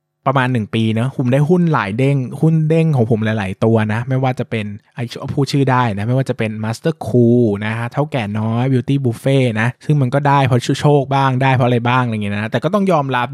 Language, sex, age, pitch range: Thai, male, 20-39, 110-135 Hz